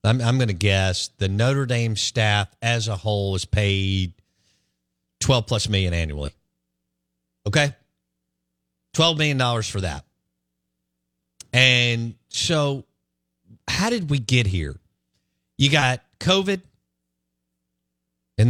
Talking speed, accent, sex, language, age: 105 wpm, American, male, English, 50-69